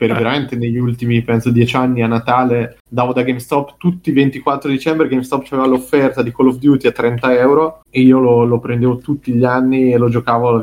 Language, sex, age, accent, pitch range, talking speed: Italian, male, 20-39, native, 120-140 Hz, 215 wpm